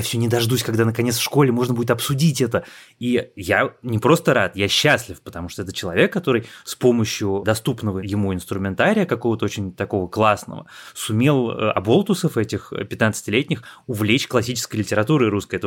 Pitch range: 105-125 Hz